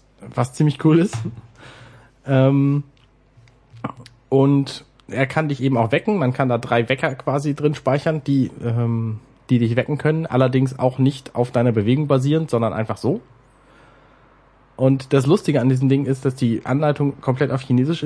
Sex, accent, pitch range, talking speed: male, German, 120-145 Hz, 160 wpm